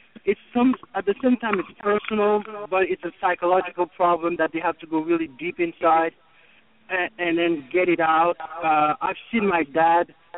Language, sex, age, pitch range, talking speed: English, male, 60-79, 170-220 Hz, 185 wpm